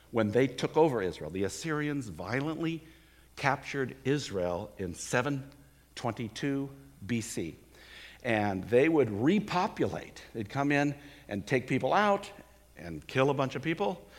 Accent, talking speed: American, 125 wpm